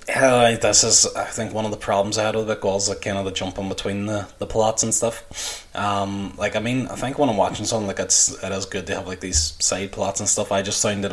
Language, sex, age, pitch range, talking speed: English, male, 20-39, 90-100 Hz, 285 wpm